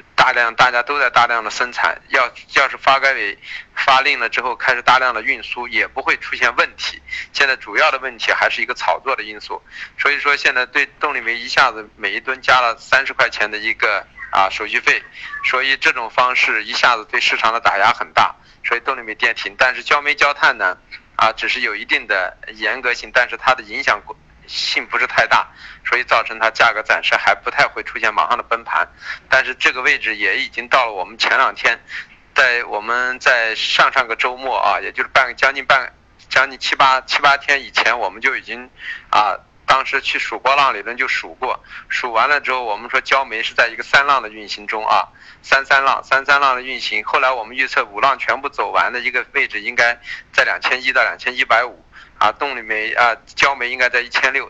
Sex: male